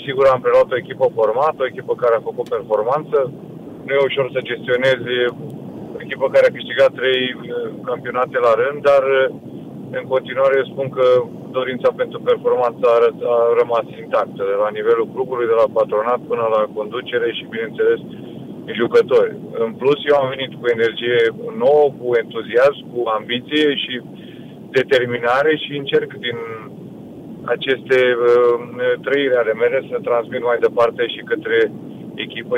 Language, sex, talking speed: Romanian, male, 150 wpm